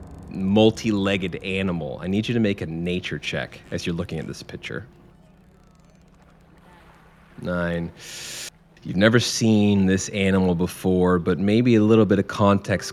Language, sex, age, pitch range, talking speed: English, male, 30-49, 90-115 Hz, 140 wpm